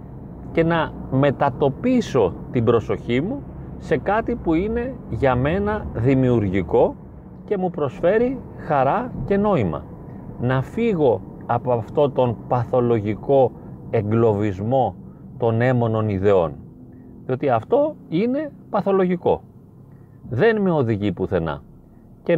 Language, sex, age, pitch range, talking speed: Greek, male, 30-49, 115-170 Hz, 100 wpm